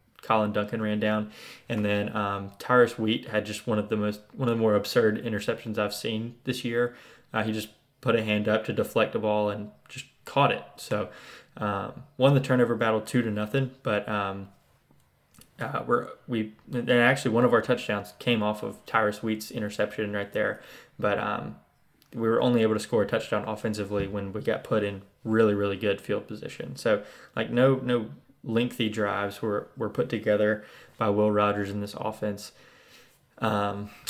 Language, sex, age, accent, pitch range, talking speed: English, male, 20-39, American, 105-120 Hz, 185 wpm